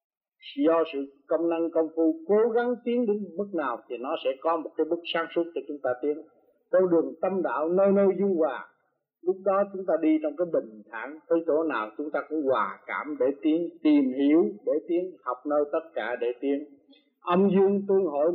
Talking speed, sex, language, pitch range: 215 wpm, male, Vietnamese, 150-210 Hz